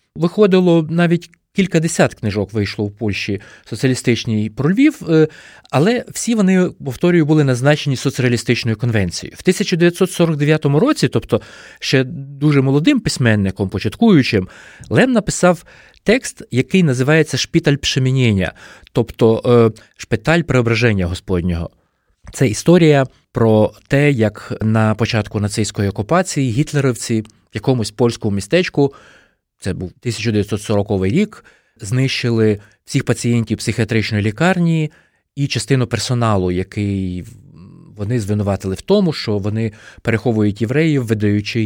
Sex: male